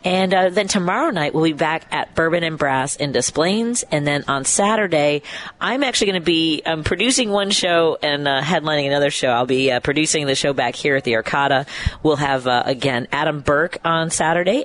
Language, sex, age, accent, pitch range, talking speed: English, female, 40-59, American, 135-170 Hz, 210 wpm